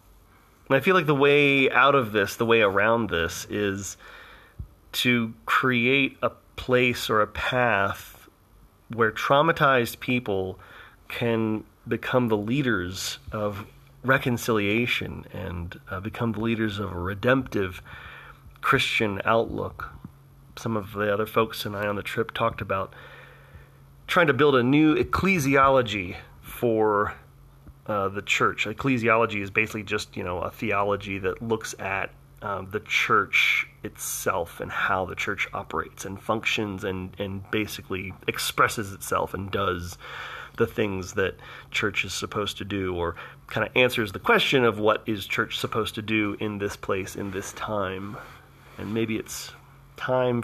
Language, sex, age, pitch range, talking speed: English, male, 30-49, 100-120 Hz, 145 wpm